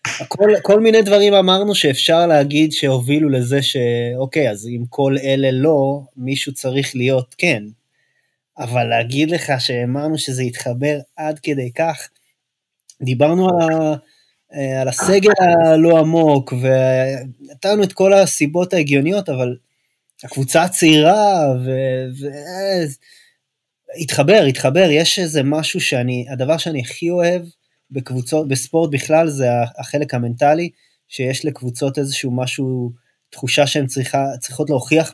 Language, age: Hebrew, 20-39